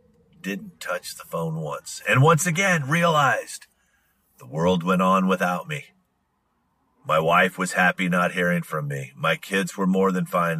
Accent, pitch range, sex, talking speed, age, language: American, 90-140 Hz, male, 165 wpm, 40-59, English